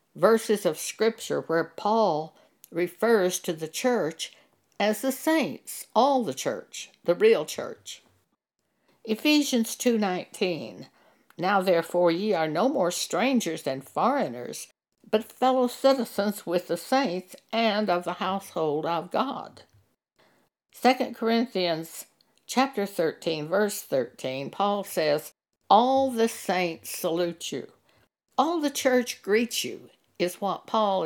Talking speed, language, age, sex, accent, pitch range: 120 wpm, English, 60-79, female, American, 175-245 Hz